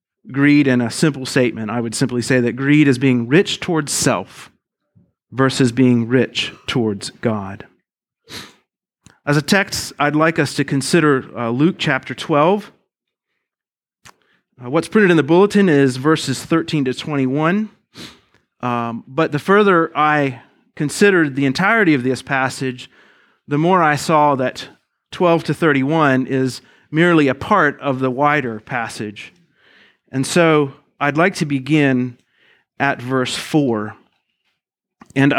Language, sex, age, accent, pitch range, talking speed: English, male, 40-59, American, 125-155 Hz, 135 wpm